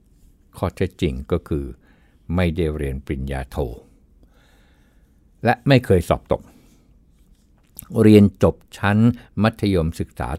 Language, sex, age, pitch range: Thai, male, 60-79, 70-100 Hz